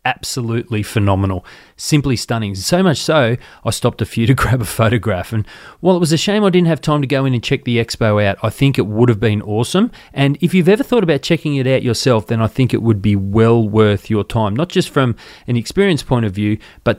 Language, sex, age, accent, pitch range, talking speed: English, male, 30-49, Australian, 105-140 Hz, 245 wpm